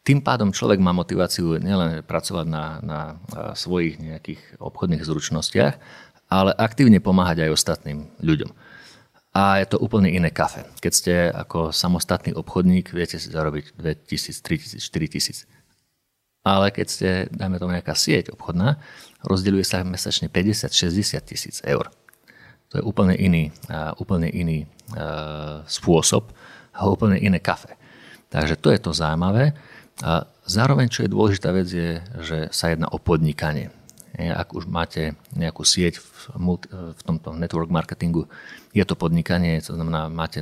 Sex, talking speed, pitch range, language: male, 140 wpm, 80-95 Hz, Slovak